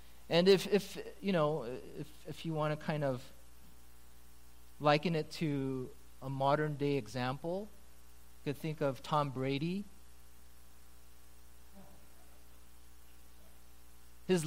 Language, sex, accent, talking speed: English, male, American, 110 wpm